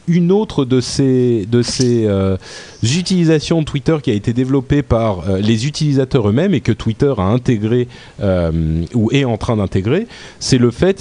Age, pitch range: 30-49, 95-130 Hz